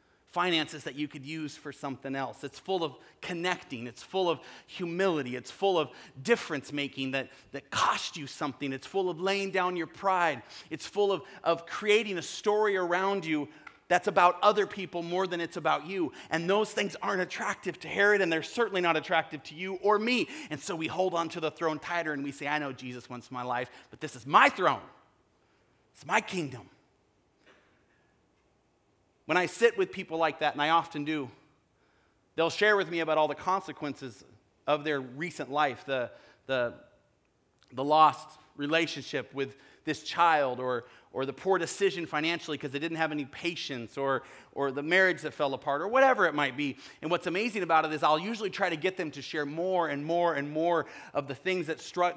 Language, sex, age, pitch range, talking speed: English, male, 30-49, 145-185 Hz, 200 wpm